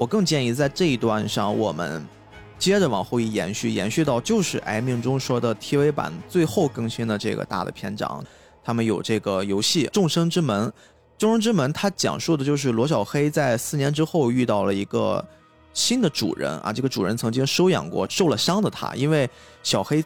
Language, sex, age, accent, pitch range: Chinese, male, 20-39, native, 105-150 Hz